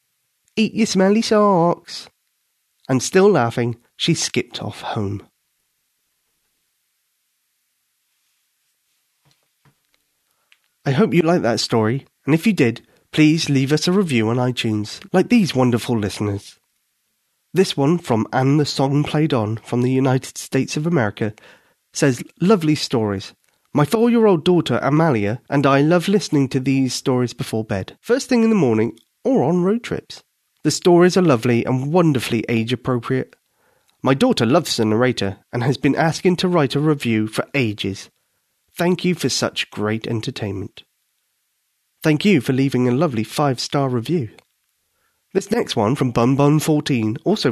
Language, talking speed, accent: English, 145 wpm, British